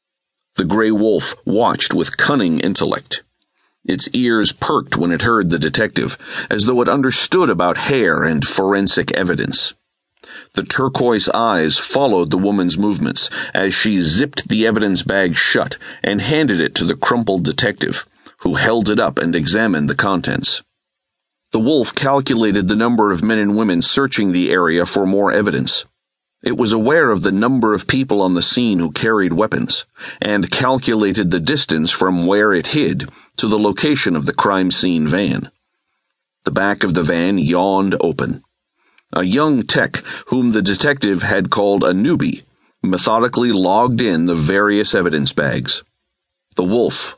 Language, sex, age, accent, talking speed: English, male, 50-69, American, 160 wpm